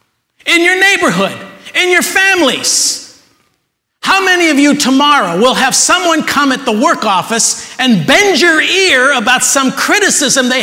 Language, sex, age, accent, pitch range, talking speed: English, male, 50-69, American, 165-235 Hz, 150 wpm